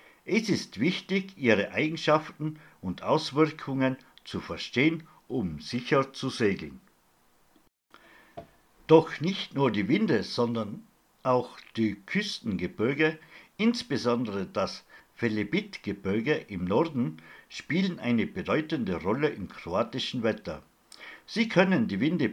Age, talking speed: 60-79, 105 wpm